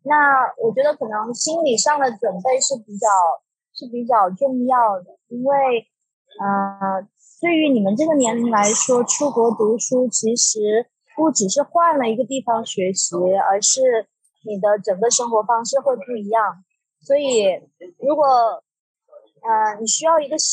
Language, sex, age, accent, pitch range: English, female, 20-39, Chinese, 210-275 Hz